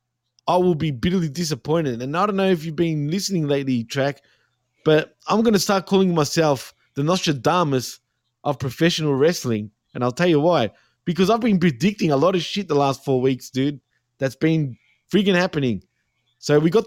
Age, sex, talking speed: 20-39, male, 185 wpm